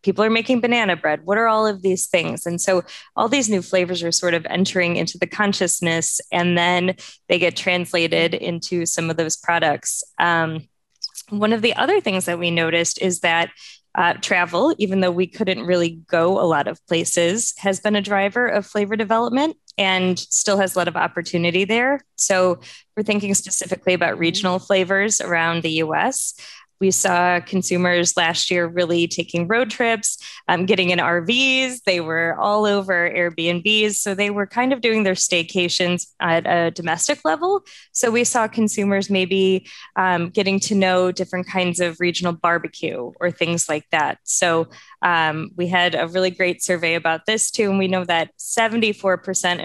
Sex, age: female, 20-39